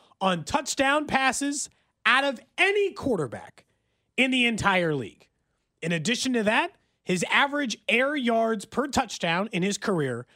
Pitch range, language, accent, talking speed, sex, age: 175-255 Hz, English, American, 140 wpm, male, 30-49